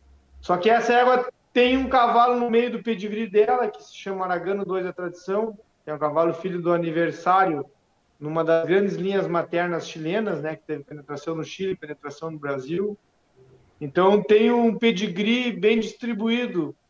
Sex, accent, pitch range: male, Brazilian, 160-220 Hz